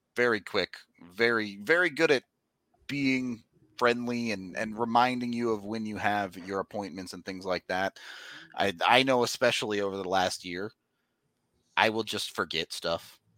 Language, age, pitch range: English, 30-49, 100-135 Hz